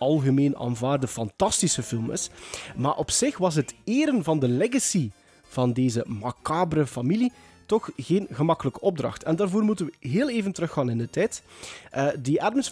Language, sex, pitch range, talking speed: Dutch, male, 130-190 Hz, 165 wpm